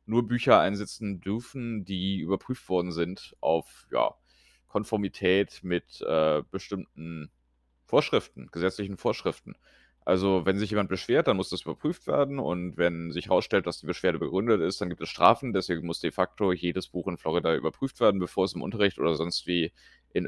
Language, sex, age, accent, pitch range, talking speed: German, male, 30-49, German, 85-105 Hz, 170 wpm